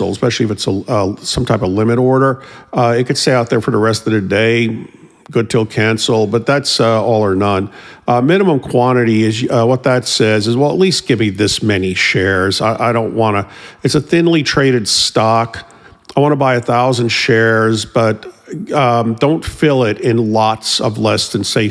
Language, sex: English, male